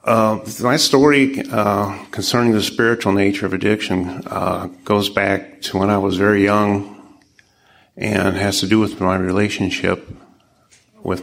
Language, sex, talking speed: English, male, 145 wpm